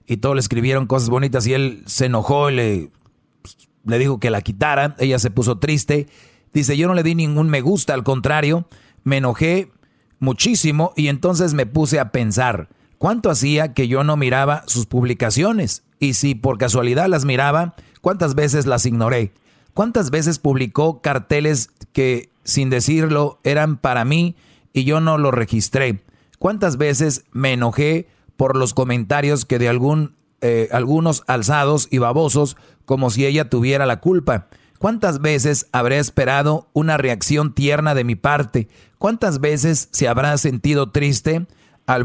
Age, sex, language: 40-59, male, Spanish